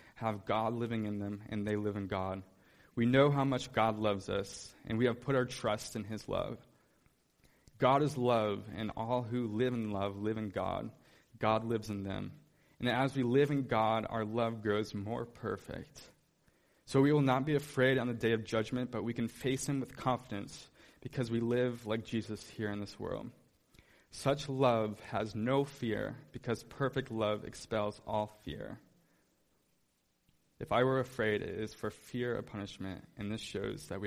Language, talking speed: English, 185 wpm